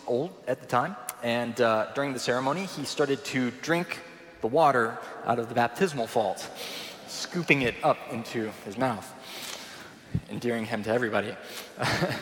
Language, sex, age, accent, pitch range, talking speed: English, male, 20-39, American, 120-165 Hz, 145 wpm